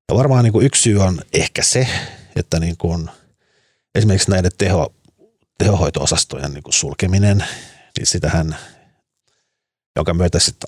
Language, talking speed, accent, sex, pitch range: Finnish, 95 wpm, native, male, 90-110 Hz